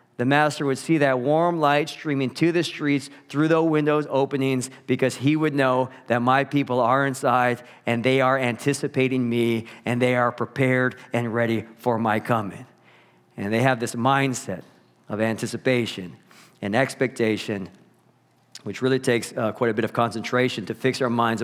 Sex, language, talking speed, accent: male, English, 170 wpm, American